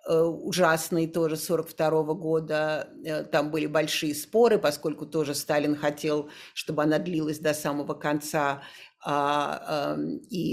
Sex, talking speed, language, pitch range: female, 110 wpm, Russian, 150-175 Hz